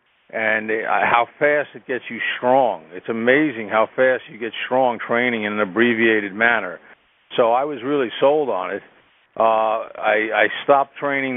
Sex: male